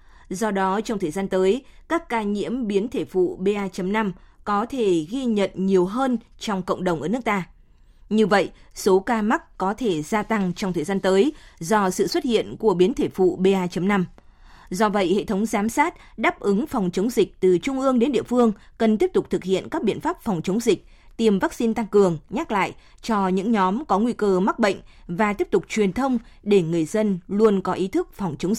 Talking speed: 215 wpm